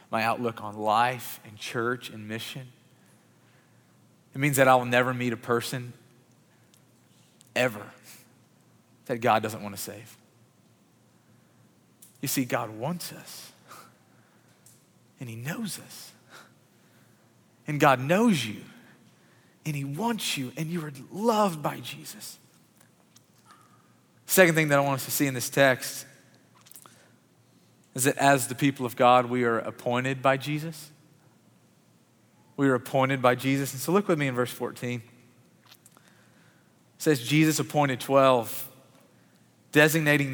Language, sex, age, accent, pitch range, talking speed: English, male, 40-59, American, 120-150 Hz, 130 wpm